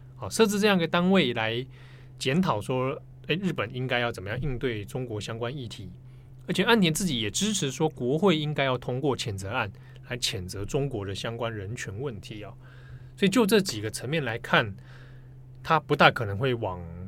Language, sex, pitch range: Chinese, male, 120-150 Hz